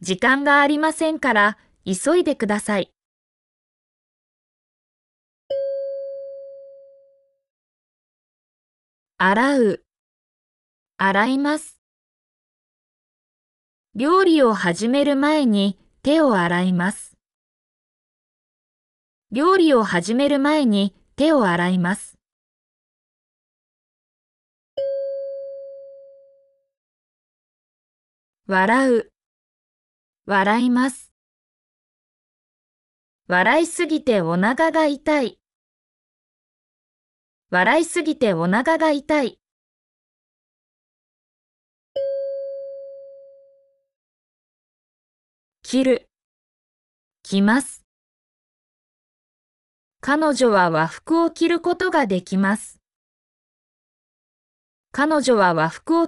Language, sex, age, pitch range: Japanese, female, 20-39, 200-290 Hz